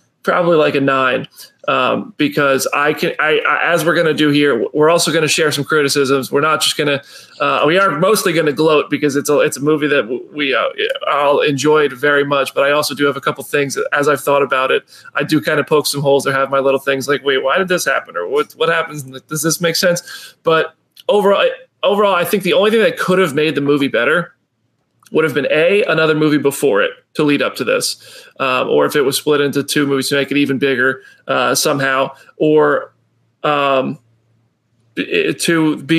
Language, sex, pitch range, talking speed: English, male, 140-165 Hz, 225 wpm